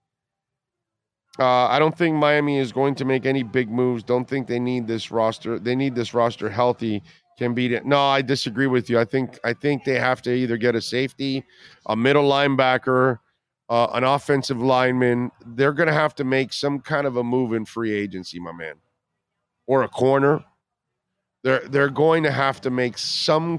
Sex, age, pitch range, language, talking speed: male, 40-59, 120-140 Hz, English, 195 wpm